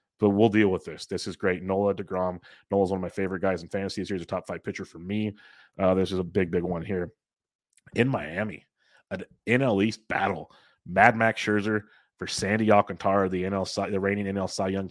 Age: 30-49